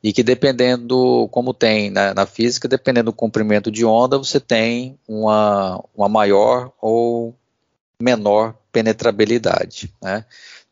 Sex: male